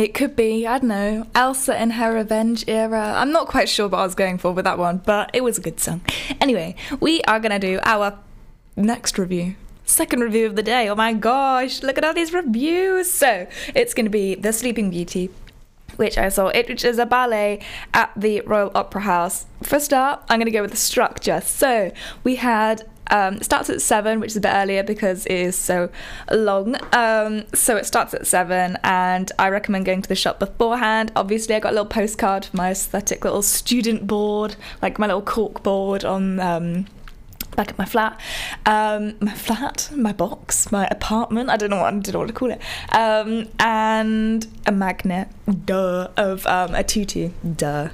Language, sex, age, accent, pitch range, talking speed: English, female, 10-29, British, 190-235 Hz, 205 wpm